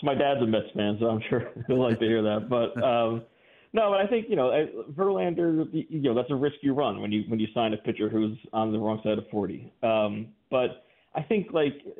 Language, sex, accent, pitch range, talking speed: English, male, American, 110-140 Hz, 245 wpm